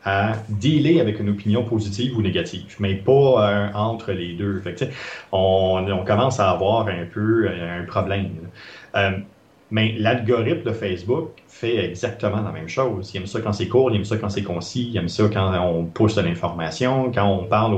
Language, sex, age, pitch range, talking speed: French, male, 30-49, 100-120 Hz, 195 wpm